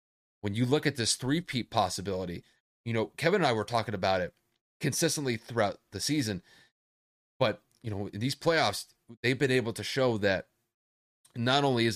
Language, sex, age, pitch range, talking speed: English, male, 30-49, 95-130 Hz, 175 wpm